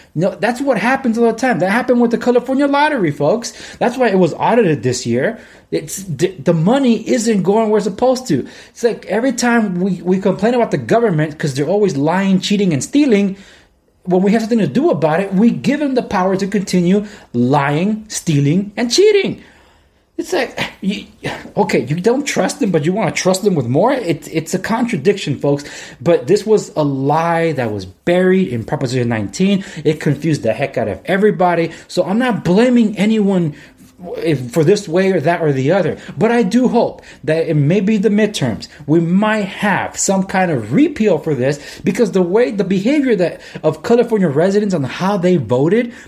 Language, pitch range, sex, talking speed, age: English, 160-225 Hz, male, 195 wpm, 30-49